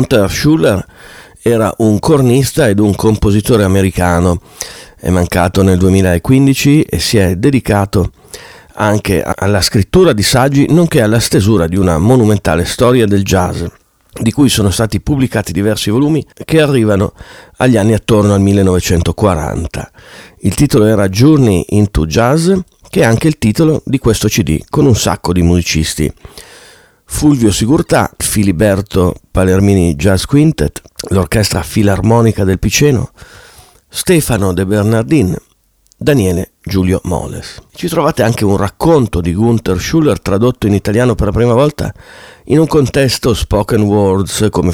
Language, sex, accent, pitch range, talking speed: Italian, male, native, 95-125 Hz, 135 wpm